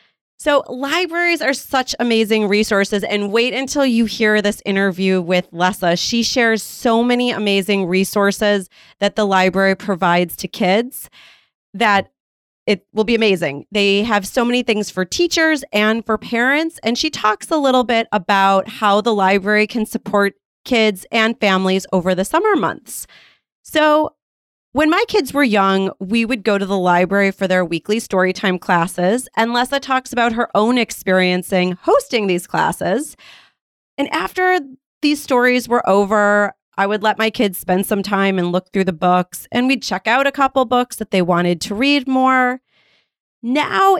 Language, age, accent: English, 30-49, American